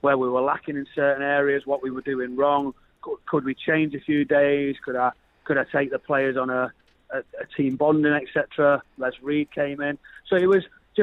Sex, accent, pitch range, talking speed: male, British, 135-155 Hz, 220 wpm